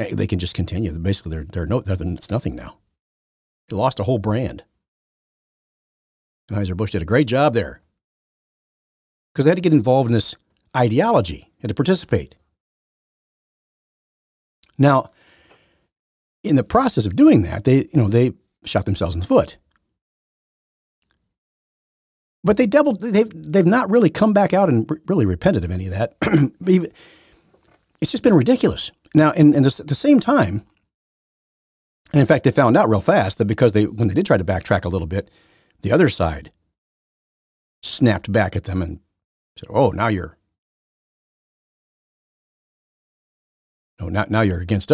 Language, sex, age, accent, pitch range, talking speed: English, male, 50-69, American, 90-135 Hz, 160 wpm